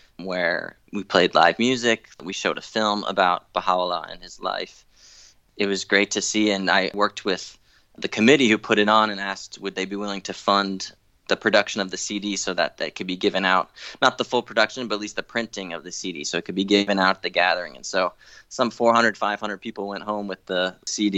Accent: American